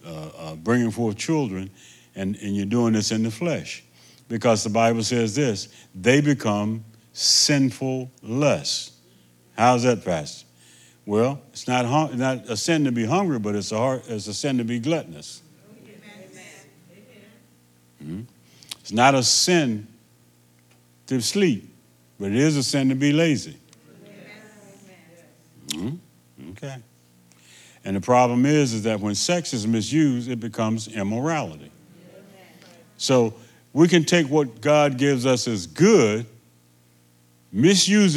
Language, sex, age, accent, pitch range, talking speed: English, male, 60-79, American, 80-130 Hz, 135 wpm